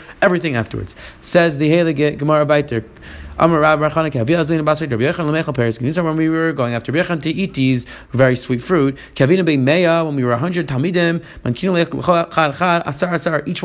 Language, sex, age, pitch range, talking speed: English, male, 30-49, 145-180 Hz, 100 wpm